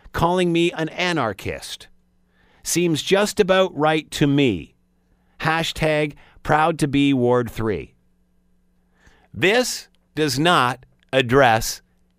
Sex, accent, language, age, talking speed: male, American, English, 50-69, 100 wpm